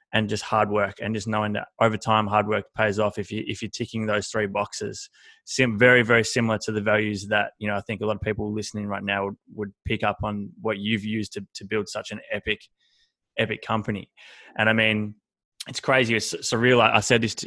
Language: English